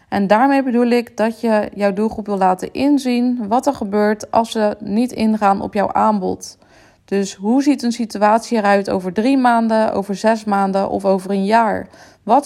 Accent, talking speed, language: Dutch, 185 wpm, Dutch